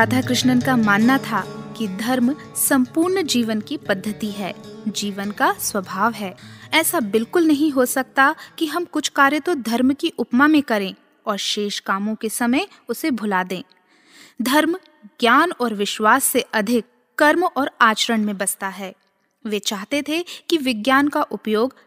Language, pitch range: Hindi, 215-290 Hz